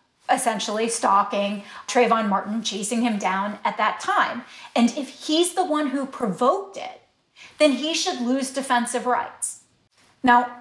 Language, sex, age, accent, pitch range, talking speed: English, female, 30-49, American, 210-265 Hz, 140 wpm